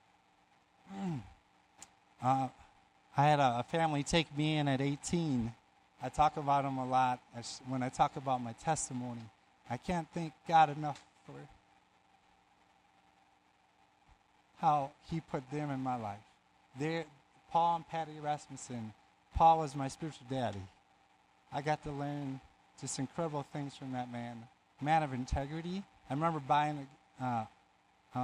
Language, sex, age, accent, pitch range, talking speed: English, male, 30-49, American, 120-150 Hz, 130 wpm